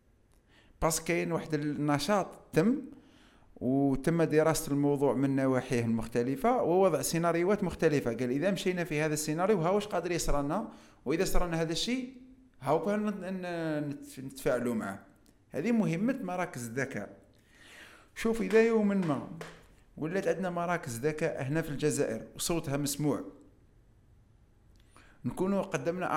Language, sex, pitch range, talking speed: Arabic, male, 135-195 Hz, 110 wpm